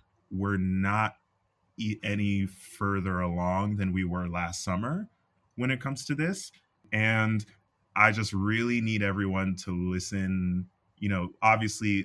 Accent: American